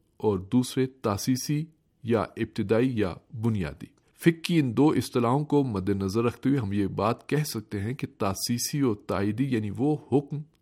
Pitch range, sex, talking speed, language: 105-140 Hz, male, 165 wpm, Urdu